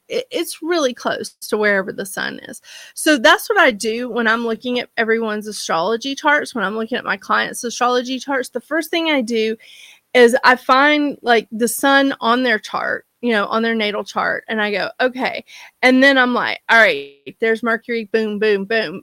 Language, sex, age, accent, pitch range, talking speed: English, female, 30-49, American, 225-310 Hz, 200 wpm